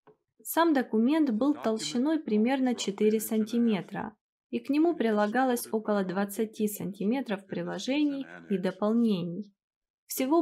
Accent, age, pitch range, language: native, 20-39, 195-245 Hz, Russian